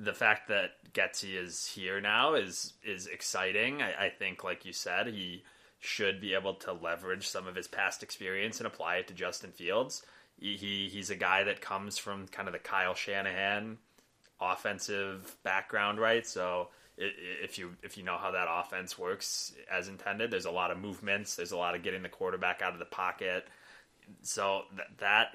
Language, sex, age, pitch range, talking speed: English, male, 20-39, 95-110 Hz, 190 wpm